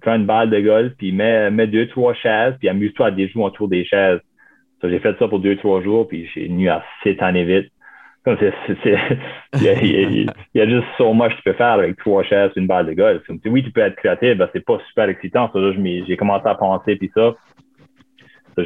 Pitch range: 90-105 Hz